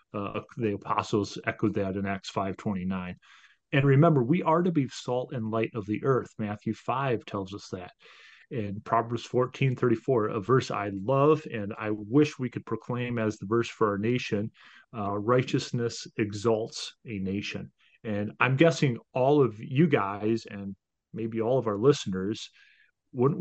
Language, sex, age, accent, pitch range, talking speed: English, male, 30-49, American, 105-140 Hz, 170 wpm